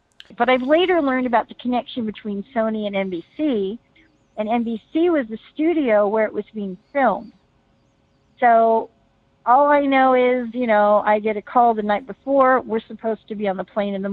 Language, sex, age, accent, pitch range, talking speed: English, female, 50-69, American, 185-235 Hz, 185 wpm